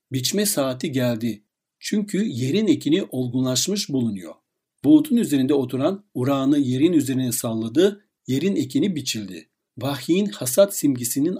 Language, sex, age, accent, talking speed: Turkish, male, 60-79, native, 110 wpm